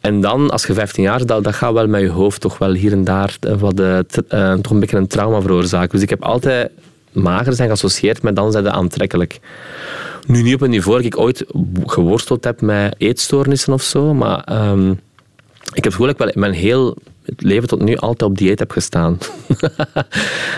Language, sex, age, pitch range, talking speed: Dutch, male, 20-39, 95-125 Hz, 215 wpm